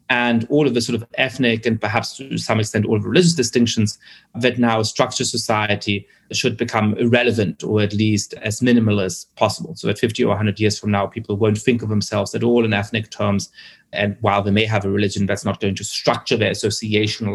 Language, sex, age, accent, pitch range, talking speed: English, male, 30-49, German, 110-150 Hz, 220 wpm